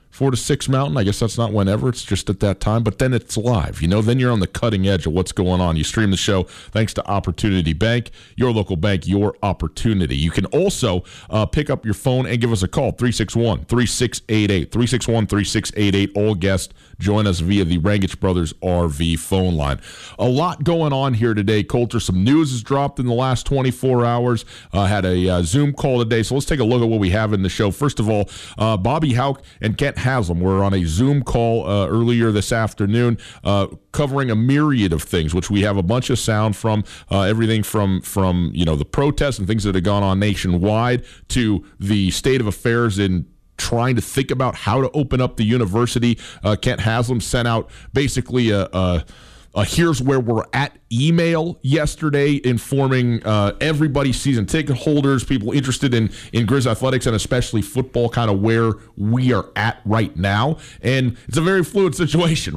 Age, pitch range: 40-59, 100-130 Hz